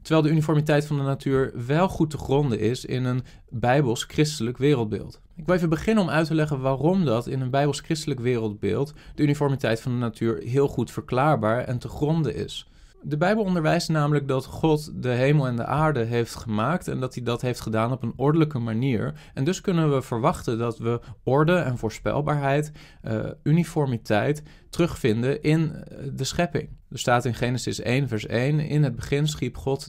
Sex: male